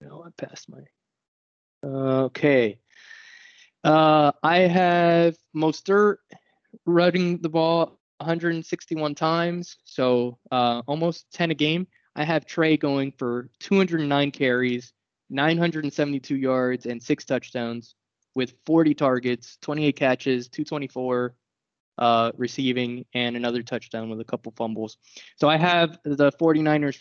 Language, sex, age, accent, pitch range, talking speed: English, male, 20-39, American, 125-155 Hz, 115 wpm